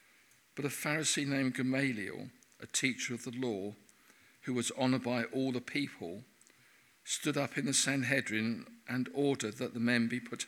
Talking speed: 165 wpm